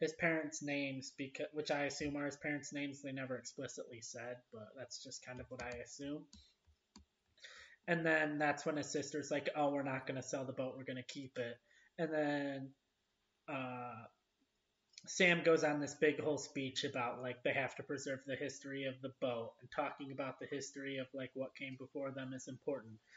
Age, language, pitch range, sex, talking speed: 20-39, English, 120-145 Hz, male, 200 wpm